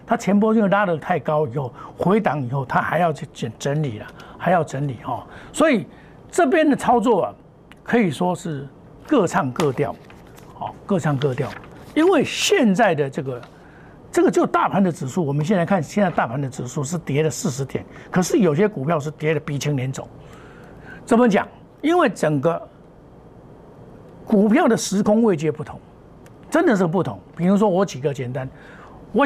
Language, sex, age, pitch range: Chinese, male, 60-79, 140-200 Hz